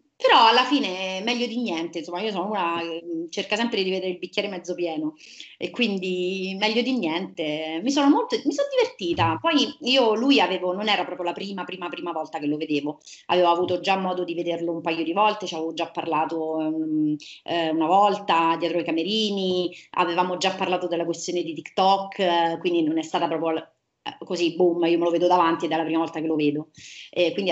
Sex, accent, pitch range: female, native, 170-250 Hz